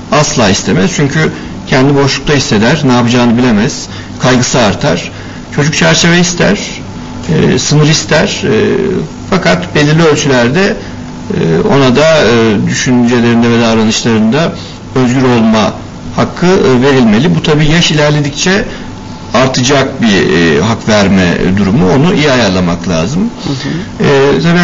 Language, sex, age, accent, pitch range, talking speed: Turkish, male, 60-79, native, 120-160 Hz, 105 wpm